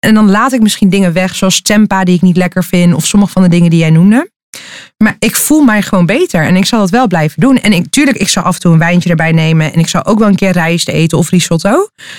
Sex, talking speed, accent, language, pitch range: female, 285 wpm, Dutch, Dutch, 180-220 Hz